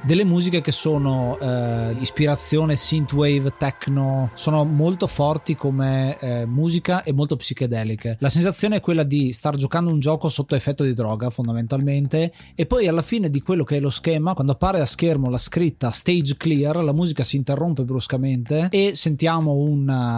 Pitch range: 130-160 Hz